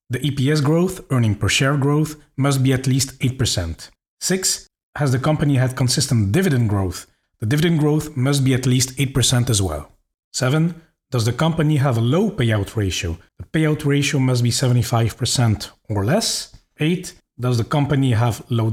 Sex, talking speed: male, 170 wpm